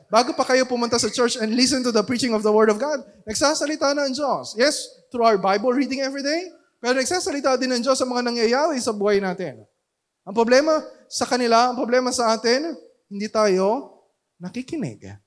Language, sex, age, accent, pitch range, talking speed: Filipino, male, 20-39, native, 175-250 Hz, 195 wpm